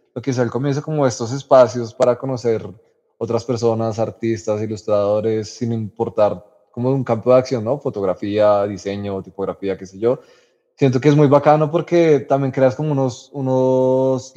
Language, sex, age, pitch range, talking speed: Spanish, male, 20-39, 110-130 Hz, 165 wpm